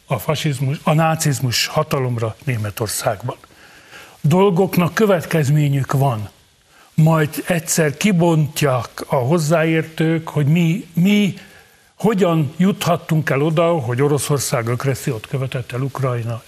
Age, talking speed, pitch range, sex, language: 60-79, 100 wpm, 140-170 Hz, male, Hungarian